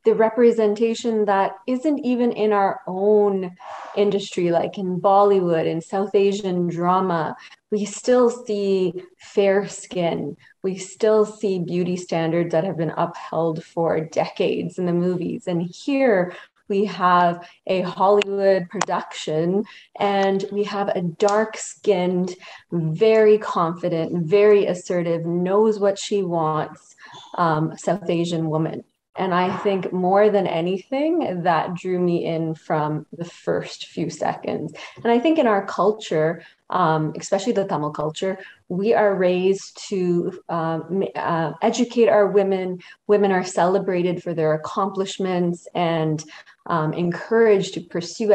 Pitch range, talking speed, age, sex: 170-205 Hz, 130 wpm, 30-49, female